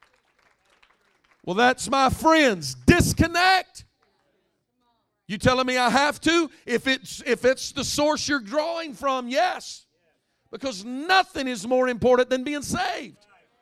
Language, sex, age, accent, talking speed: English, male, 50-69, American, 125 wpm